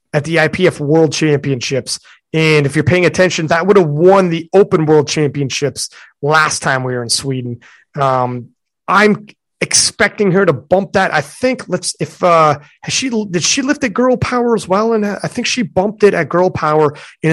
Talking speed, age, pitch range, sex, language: 195 wpm, 30-49, 140-185 Hz, male, English